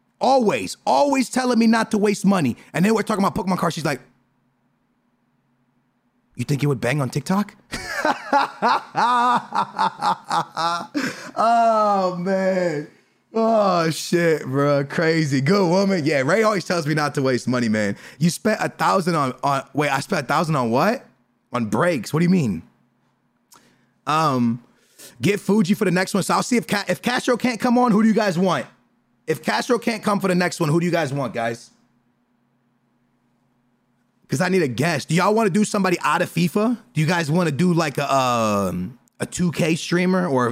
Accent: American